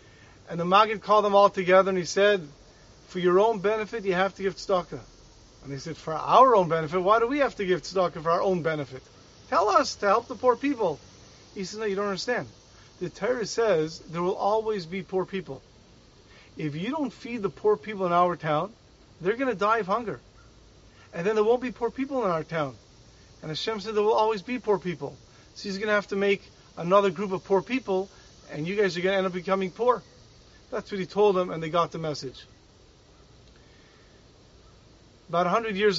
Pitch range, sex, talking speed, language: 165-210 Hz, male, 215 wpm, English